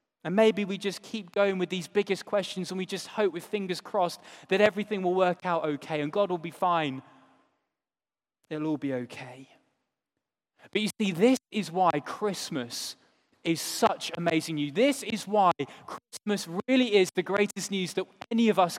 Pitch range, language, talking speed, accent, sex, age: 175-225 Hz, English, 180 wpm, British, male, 20-39